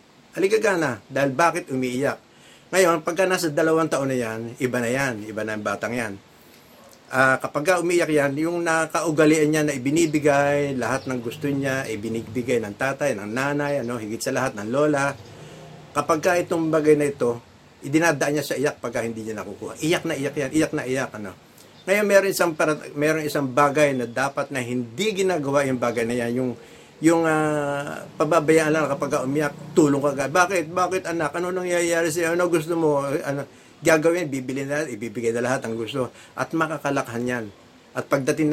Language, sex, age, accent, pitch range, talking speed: English, male, 50-69, Filipino, 125-160 Hz, 175 wpm